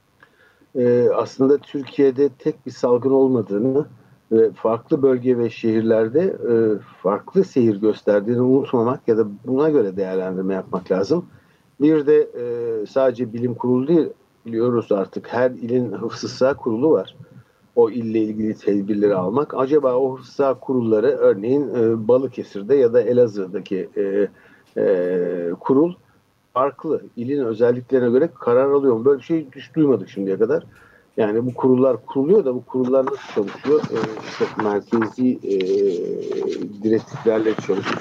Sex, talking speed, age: male, 125 wpm, 60-79